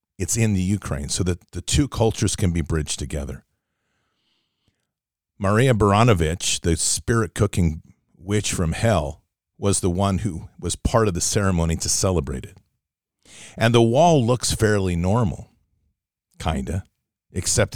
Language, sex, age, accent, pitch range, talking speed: English, male, 40-59, American, 85-105 Hz, 140 wpm